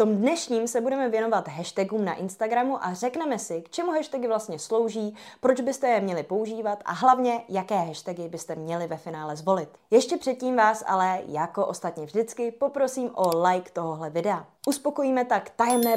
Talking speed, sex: 175 wpm, female